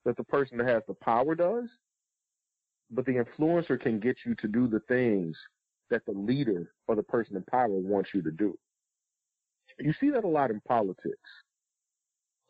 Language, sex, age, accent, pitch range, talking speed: English, male, 40-59, American, 105-125 Hz, 185 wpm